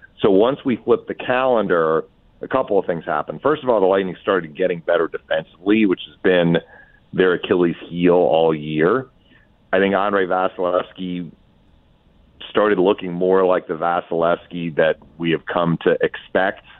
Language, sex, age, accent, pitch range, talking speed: English, male, 40-59, American, 85-120 Hz, 155 wpm